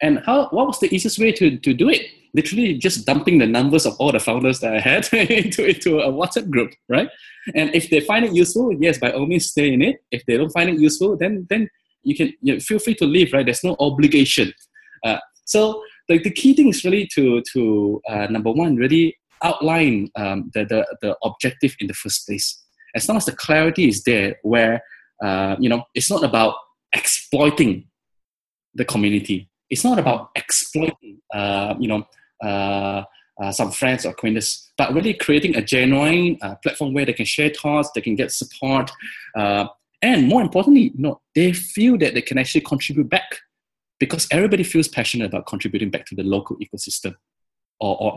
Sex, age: male, 10-29